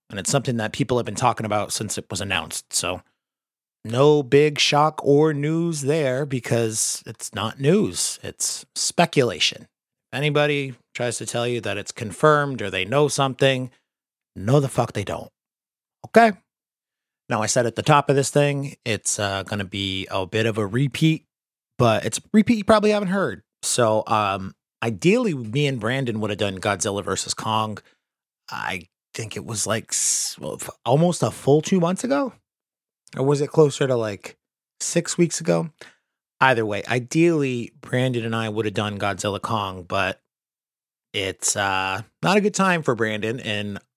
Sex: male